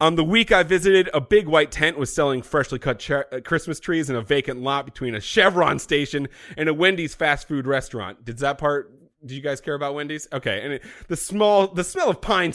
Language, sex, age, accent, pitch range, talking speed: English, male, 30-49, American, 135-180 Hz, 220 wpm